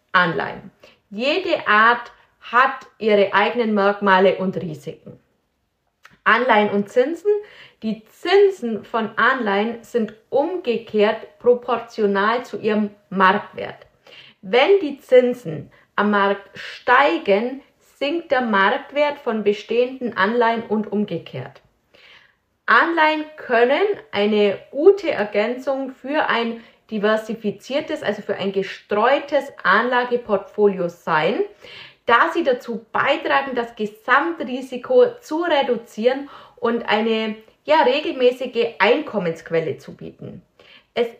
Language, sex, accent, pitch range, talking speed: German, female, German, 210-275 Hz, 95 wpm